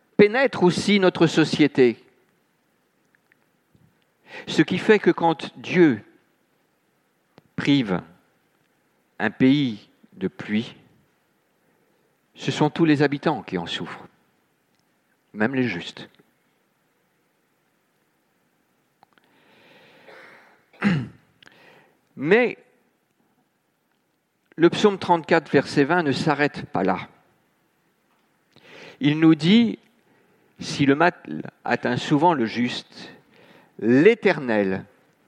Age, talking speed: 50-69, 80 wpm